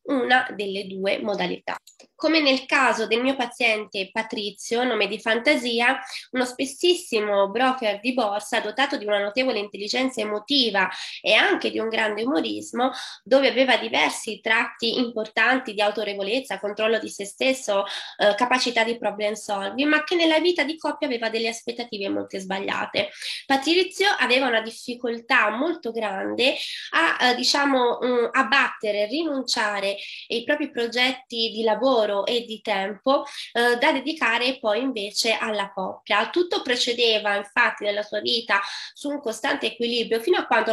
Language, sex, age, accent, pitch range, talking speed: Italian, female, 20-39, native, 215-265 Hz, 145 wpm